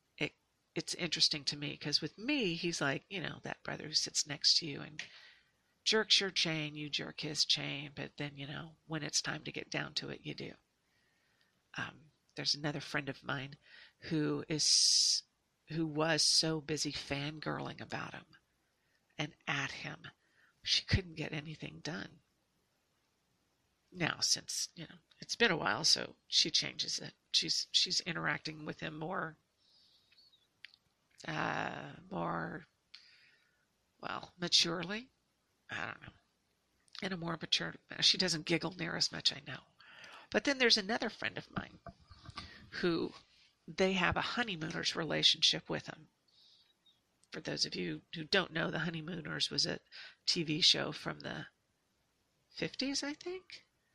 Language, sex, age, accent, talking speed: English, female, 50-69, American, 150 wpm